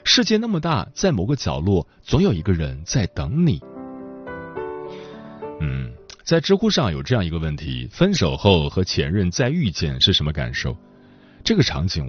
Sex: male